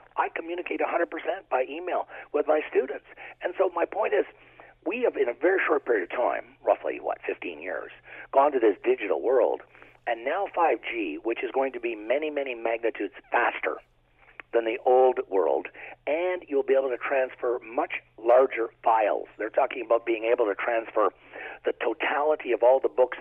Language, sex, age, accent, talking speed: English, male, 50-69, American, 180 wpm